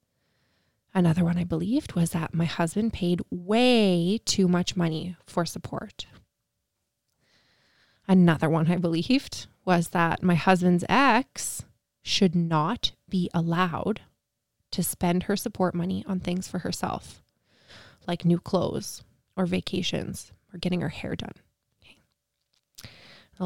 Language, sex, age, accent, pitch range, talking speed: English, female, 20-39, American, 175-210 Hz, 125 wpm